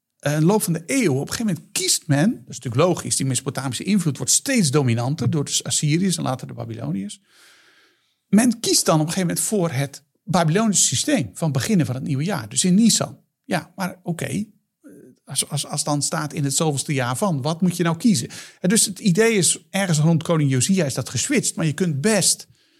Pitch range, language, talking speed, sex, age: 140-190 Hz, Dutch, 215 wpm, male, 50-69